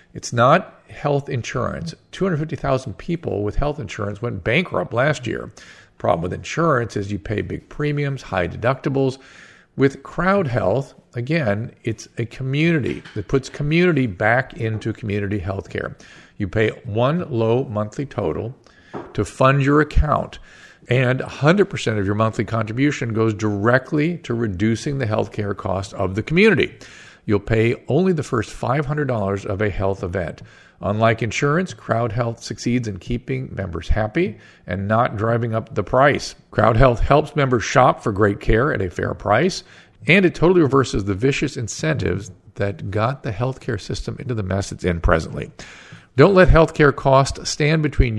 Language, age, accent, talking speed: English, 50-69, American, 155 wpm